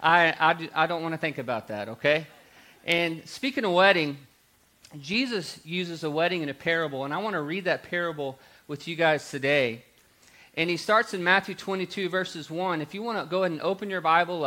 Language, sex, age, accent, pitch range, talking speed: English, male, 40-59, American, 150-190 Hz, 205 wpm